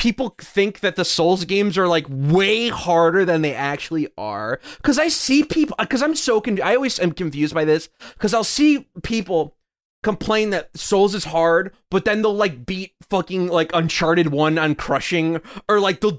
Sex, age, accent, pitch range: male, 20-39, American, 175-245 Hz